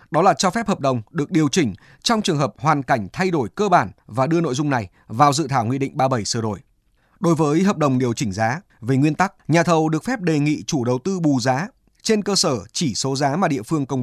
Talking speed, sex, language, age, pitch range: 265 wpm, male, Vietnamese, 20-39, 130-180 Hz